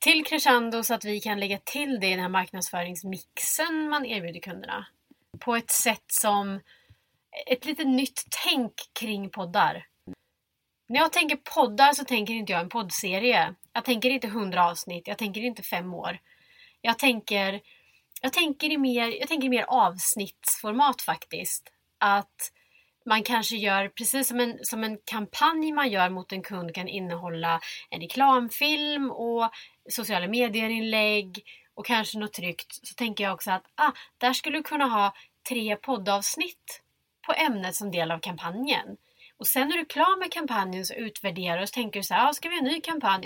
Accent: Swedish